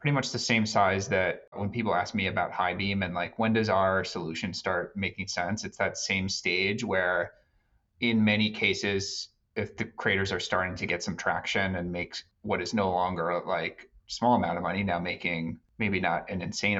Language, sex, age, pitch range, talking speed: English, male, 30-49, 90-105 Hz, 200 wpm